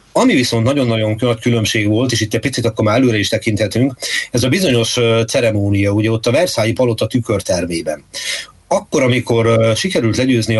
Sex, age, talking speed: male, 30-49, 165 wpm